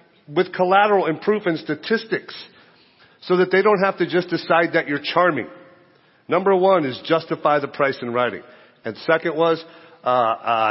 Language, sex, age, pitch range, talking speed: English, male, 50-69, 145-190 Hz, 150 wpm